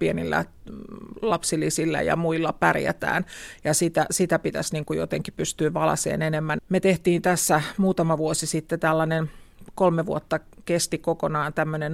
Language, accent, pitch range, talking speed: Finnish, native, 155-175 Hz, 130 wpm